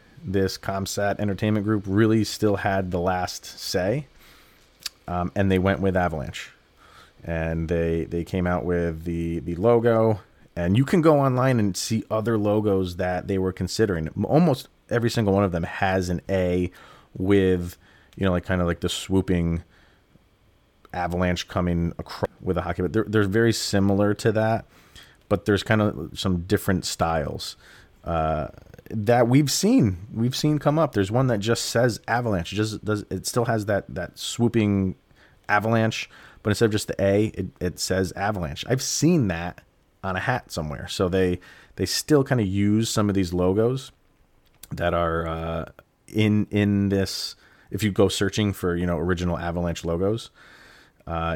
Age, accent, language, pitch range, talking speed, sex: 30-49, American, English, 90-110 Hz, 165 wpm, male